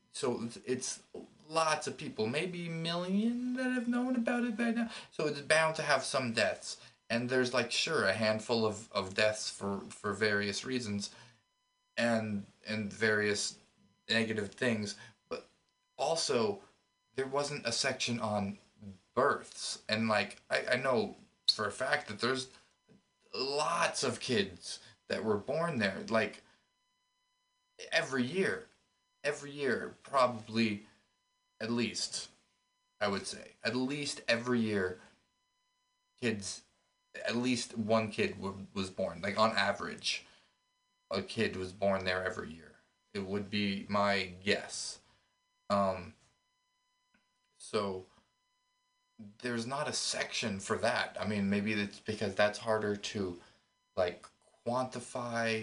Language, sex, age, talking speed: English, male, 30-49, 130 wpm